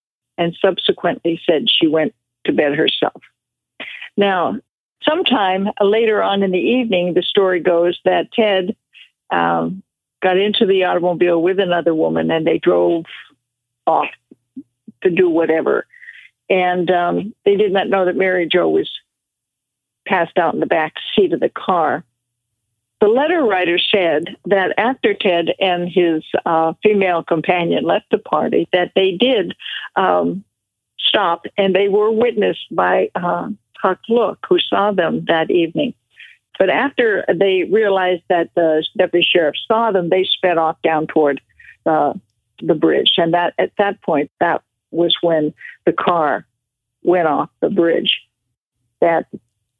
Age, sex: 60-79, female